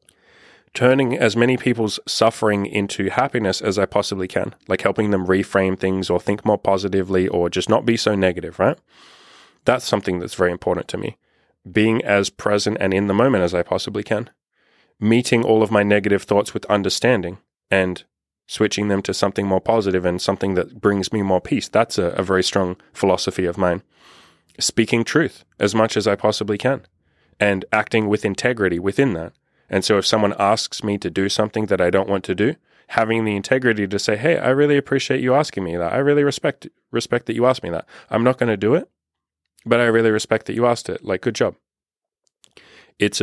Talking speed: 200 wpm